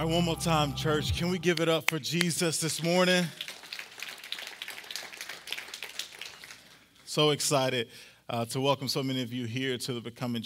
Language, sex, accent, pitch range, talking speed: English, male, American, 120-140 Hz, 160 wpm